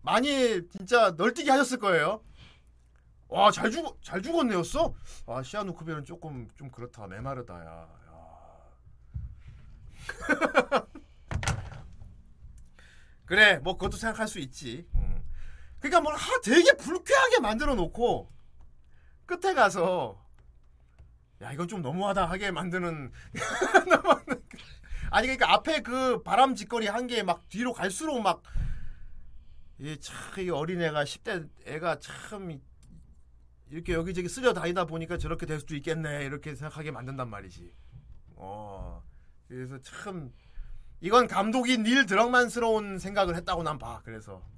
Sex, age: male, 40-59